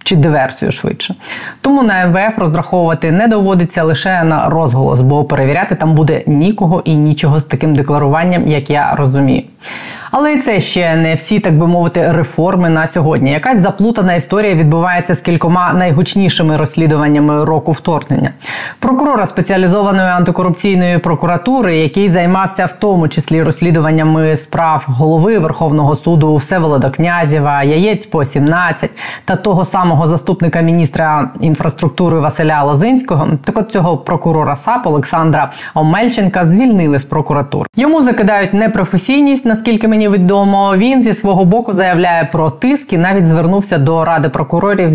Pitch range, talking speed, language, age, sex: 155-190 Hz, 135 wpm, Ukrainian, 20-39, female